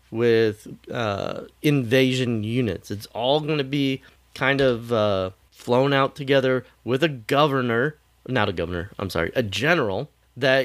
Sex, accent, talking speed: male, American, 145 wpm